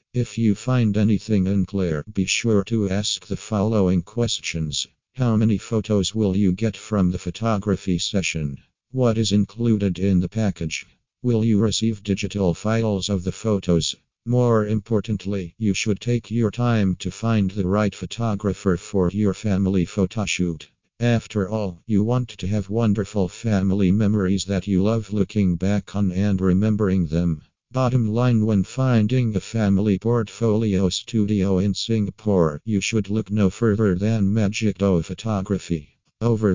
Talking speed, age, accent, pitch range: 150 wpm, 50-69, American, 95-110 Hz